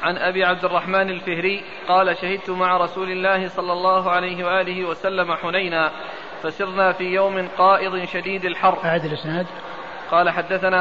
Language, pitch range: Arabic, 180-190 Hz